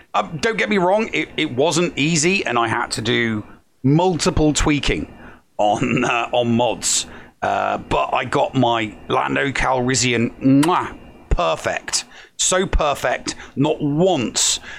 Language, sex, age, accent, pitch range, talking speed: English, male, 40-59, British, 115-145 Hz, 135 wpm